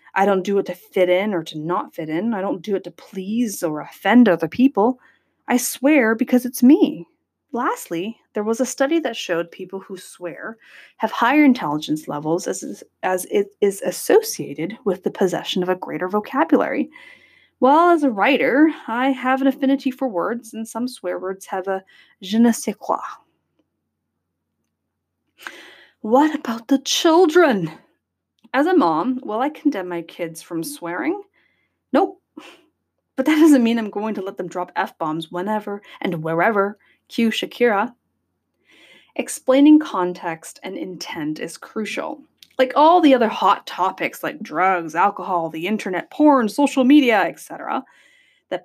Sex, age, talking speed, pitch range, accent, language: female, 20-39, 155 wpm, 185-280 Hz, American, English